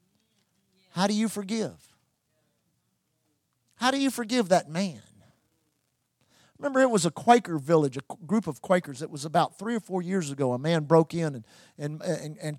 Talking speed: 170 wpm